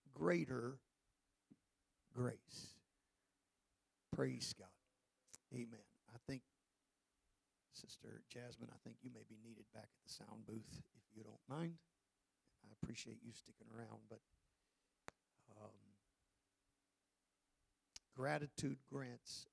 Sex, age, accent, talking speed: male, 50-69, American, 100 wpm